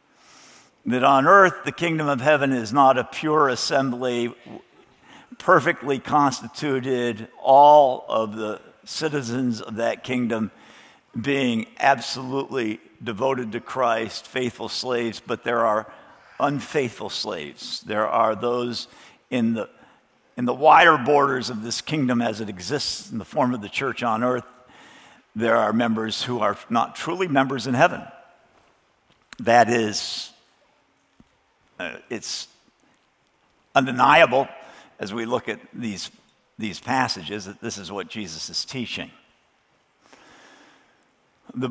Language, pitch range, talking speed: English, 115-145 Hz, 120 wpm